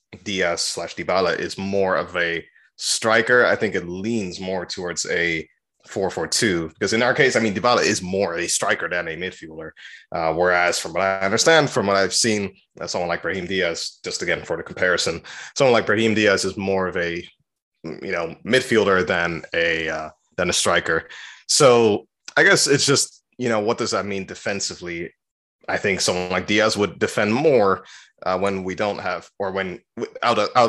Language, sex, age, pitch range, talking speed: English, male, 20-39, 90-115 Hz, 185 wpm